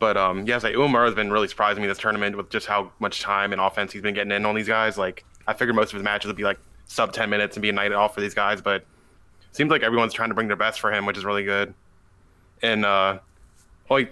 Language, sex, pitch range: English, male, 100-110 Hz